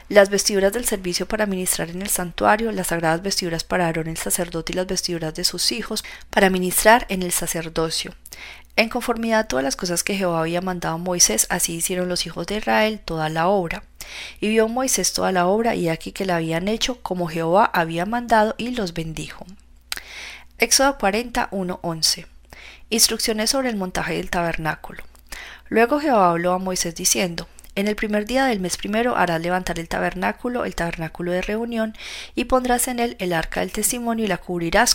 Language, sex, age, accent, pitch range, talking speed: Spanish, female, 30-49, Colombian, 170-215 Hz, 185 wpm